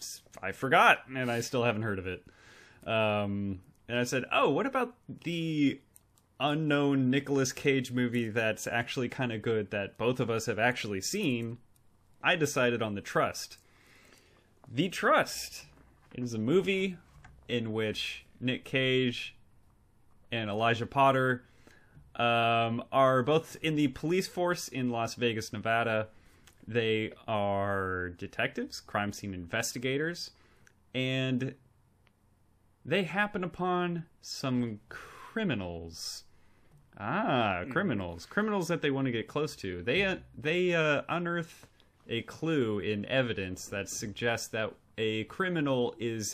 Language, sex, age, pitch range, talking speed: English, male, 20-39, 105-135 Hz, 125 wpm